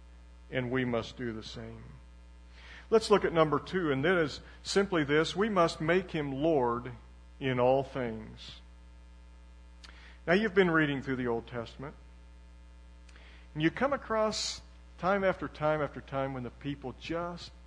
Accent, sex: American, male